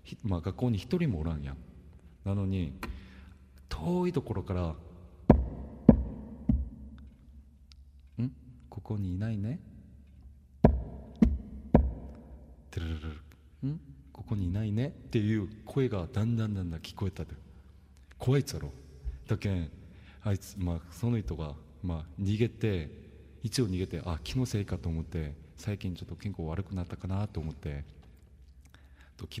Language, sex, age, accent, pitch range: Japanese, male, 40-59, Korean, 75-100 Hz